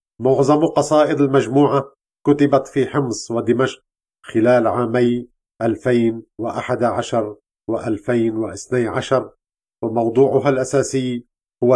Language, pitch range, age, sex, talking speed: English, 115-135 Hz, 50-69, male, 70 wpm